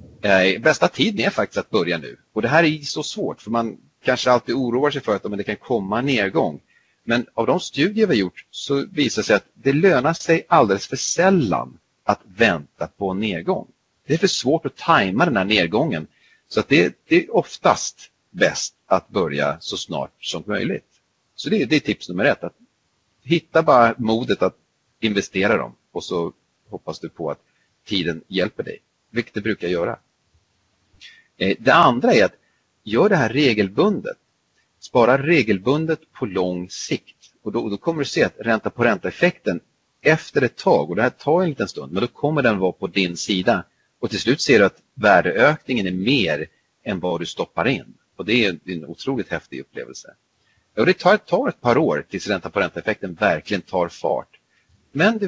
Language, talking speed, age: Swedish, 190 wpm, 40-59